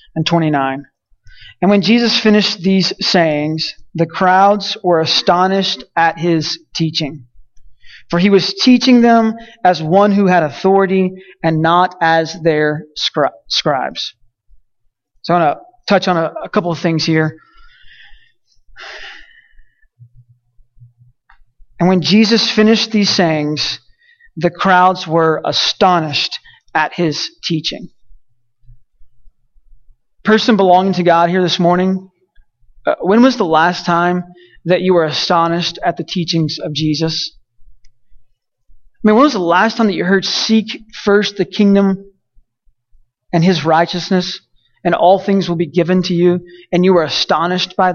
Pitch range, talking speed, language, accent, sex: 155-195 Hz, 135 wpm, English, American, male